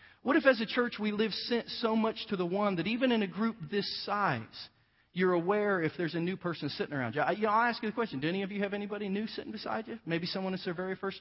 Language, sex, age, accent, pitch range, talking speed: English, male, 40-59, American, 140-200 Hz, 280 wpm